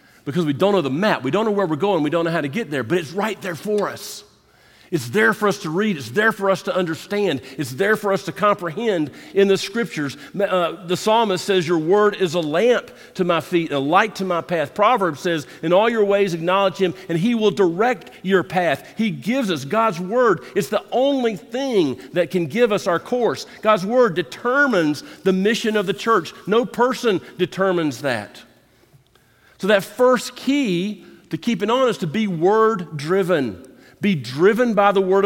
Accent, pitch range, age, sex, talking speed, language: American, 160-210 Hz, 50-69, male, 205 wpm, English